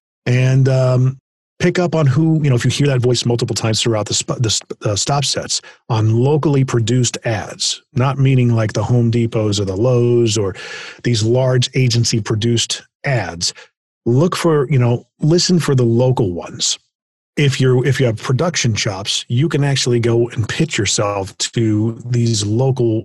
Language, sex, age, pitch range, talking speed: English, male, 40-59, 110-135 Hz, 175 wpm